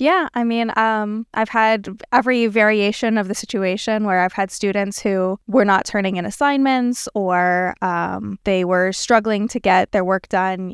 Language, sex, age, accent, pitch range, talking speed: English, female, 20-39, American, 175-215 Hz, 175 wpm